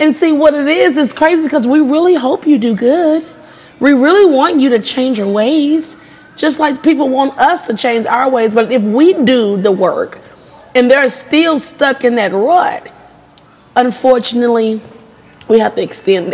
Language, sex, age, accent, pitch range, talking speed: English, female, 30-49, American, 205-295 Hz, 180 wpm